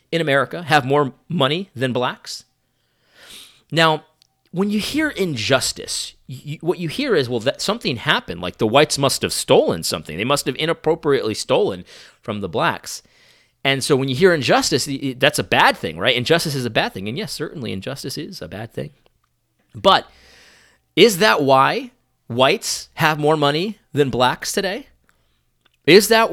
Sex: male